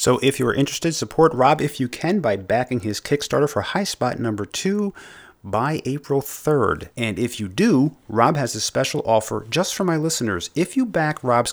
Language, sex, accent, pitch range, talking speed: English, male, American, 115-155 Hz, 200 wpm